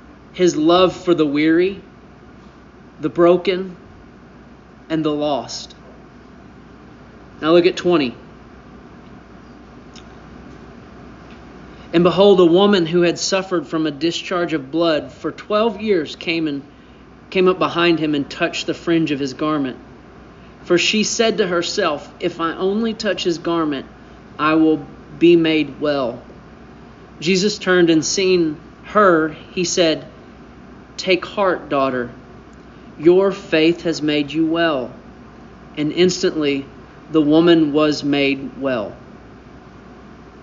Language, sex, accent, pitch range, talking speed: English, male, American, 150-180 Hz, 120 wpm